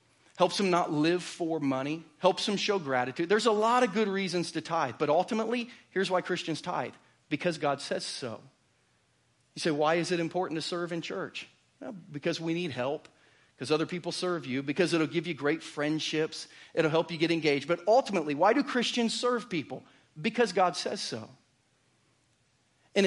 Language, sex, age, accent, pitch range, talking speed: English, male, 40-59, American, 155-205 Hz, 180 wpm